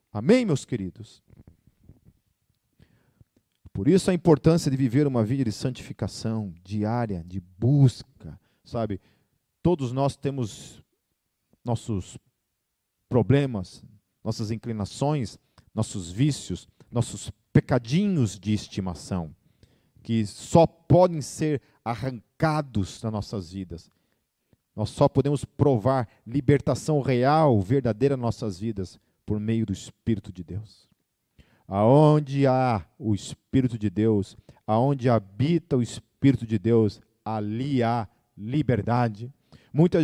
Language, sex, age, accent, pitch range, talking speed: Portuguese, male, 50-69, Brazilian, 110-140 Hz, 100 wpm